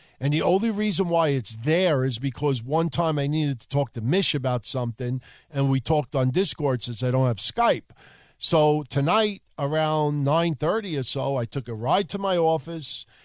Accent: American